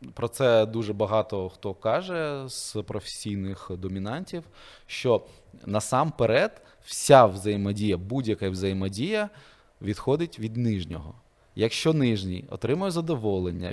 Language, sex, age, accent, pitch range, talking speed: Ukrainian, male, 20-39, native, 95-120 Hz, 95 wpm